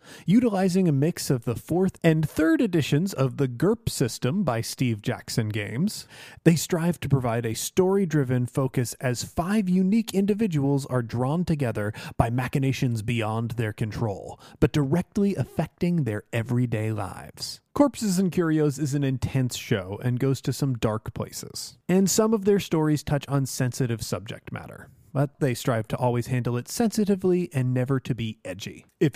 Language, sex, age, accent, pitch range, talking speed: English, male, 30-49, American, 125-185 Hz, 165 wpm